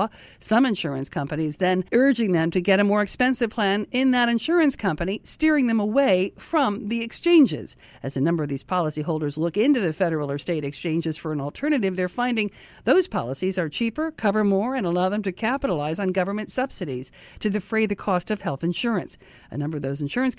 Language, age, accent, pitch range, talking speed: English, 50-69, American, 170-230 Hz, 195 wpm